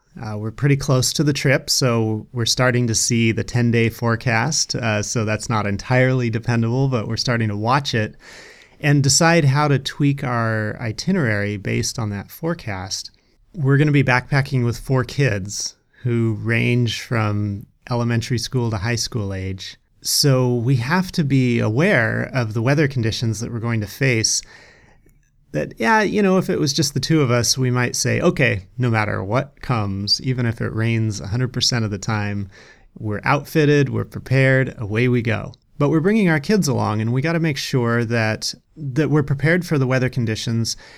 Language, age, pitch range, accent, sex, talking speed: English, 30-49, 110-140 Hz, American, male, 185 wpm